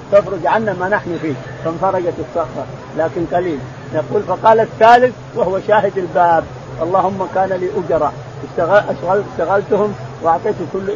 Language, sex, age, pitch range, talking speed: Arabic, male, 50-69, 165-220 Hz, 125 wpm